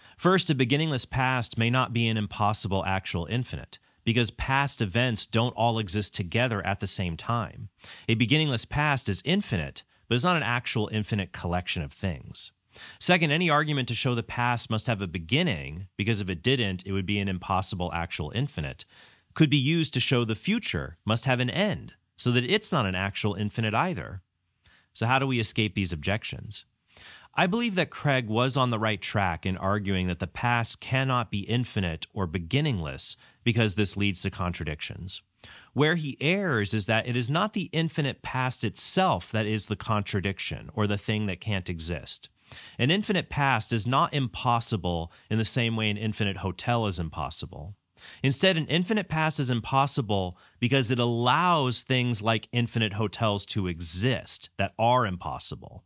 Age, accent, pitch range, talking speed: 30-49, American, 95-130 Hz, 175 wpm